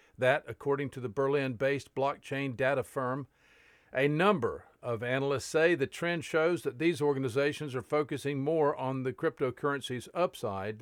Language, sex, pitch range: English, male, 130-155 Hz